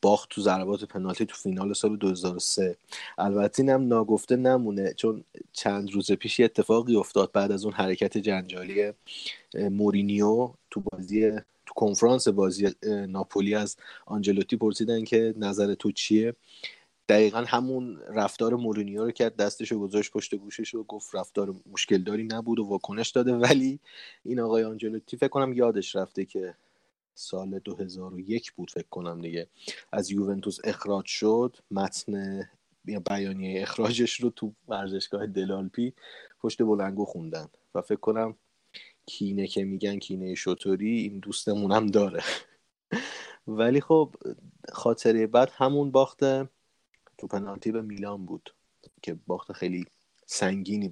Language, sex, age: Persian, male, 30-49